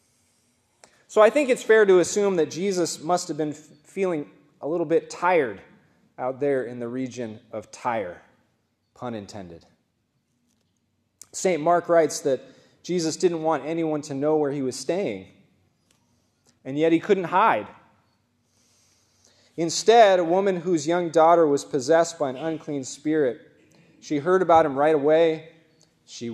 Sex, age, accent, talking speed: male, 20-39, American, 145 wpm